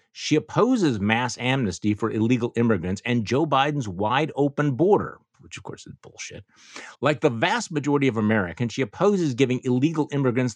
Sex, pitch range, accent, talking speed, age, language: male, 115-165 Hz, American, 165 wpm, 50-69, English